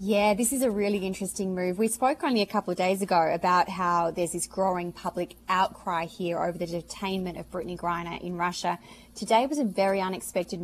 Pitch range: 175-210 Hz